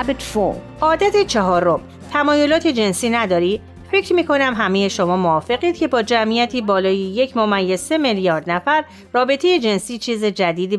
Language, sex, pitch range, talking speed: Persian, female, 180-255 Hz, 130 wpm